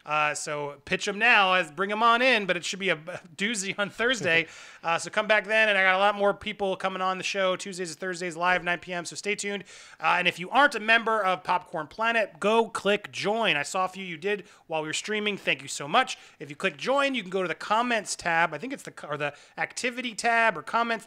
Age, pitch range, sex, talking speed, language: 30-49, 170-225 Hz, male, 255 wpm, English